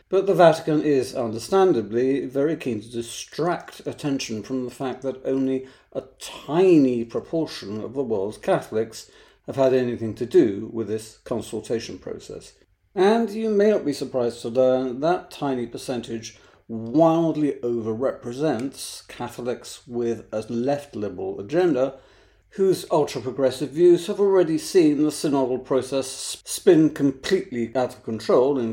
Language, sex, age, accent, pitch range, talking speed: English, male, 50-69, British, 115-155 Hz, 135 wpm